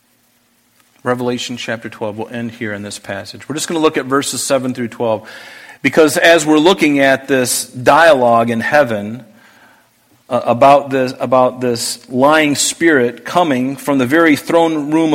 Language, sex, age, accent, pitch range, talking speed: English, male, 40-59, American, 125-150 Hz, 160 wpm